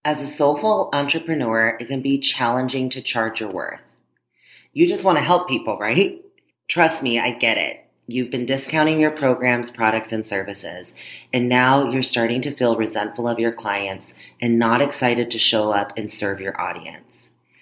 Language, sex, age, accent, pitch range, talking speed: English, female, 30-49, American, 110-140 Hz, 175 wpm